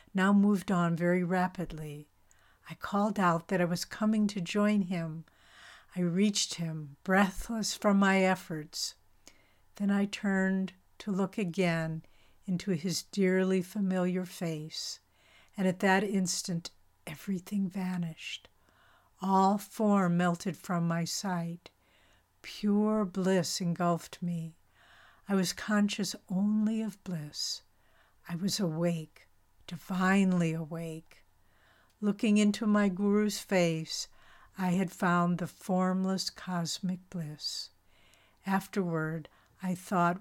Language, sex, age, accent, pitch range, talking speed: English, female, 60-79, American, 160-195 Hz, 110 wpm